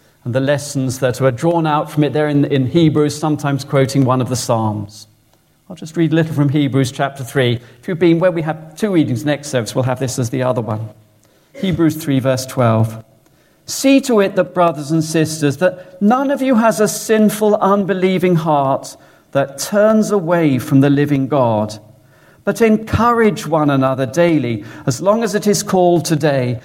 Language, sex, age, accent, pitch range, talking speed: English, male, 40-59, British, 130-180 Hz, 190 wpm